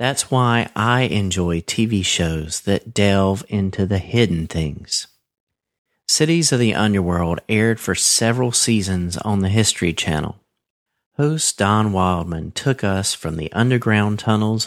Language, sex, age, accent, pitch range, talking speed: English, male, 40-59, American, 90-120 Hz, 135 wpm